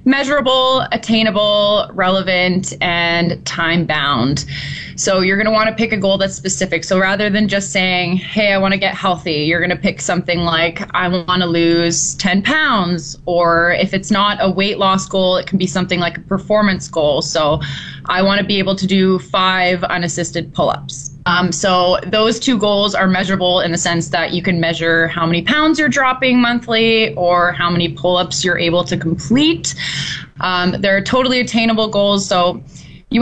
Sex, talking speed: female, 185 wpm